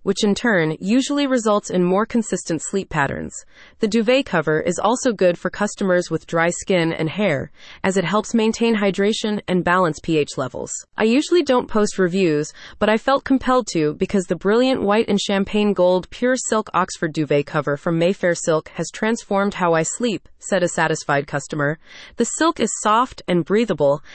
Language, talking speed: English, 180 wpm